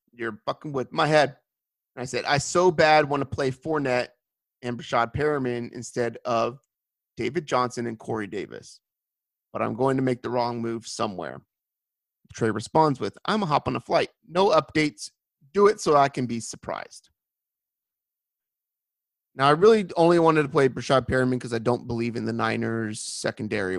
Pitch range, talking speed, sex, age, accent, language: 120-150 Hz, 175 wpm, male, 30-49, American, English